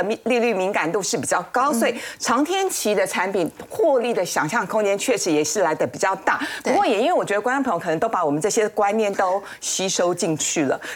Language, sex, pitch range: Chinese, female, 195-265 Hz